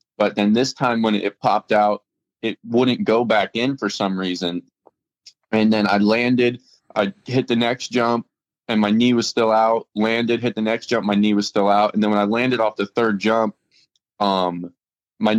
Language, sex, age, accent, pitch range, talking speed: English, male, 20-39, American, 100-115 Hz, 205 wpm